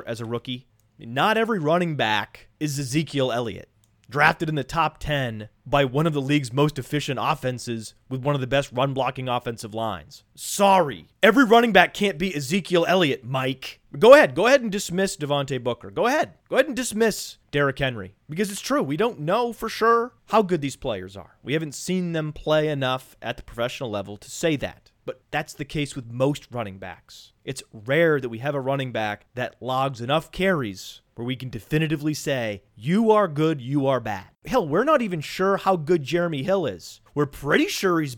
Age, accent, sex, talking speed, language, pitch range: 30-49, American, male, 200 wpm, English, 115-165 Hz